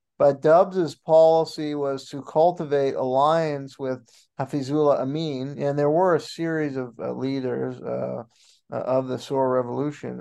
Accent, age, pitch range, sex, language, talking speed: American, 50-69, 130-155 Hz, male, English, 135 wpm